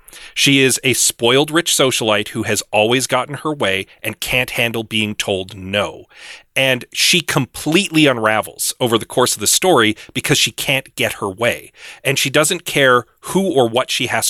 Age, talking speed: 40-59, 180 wpm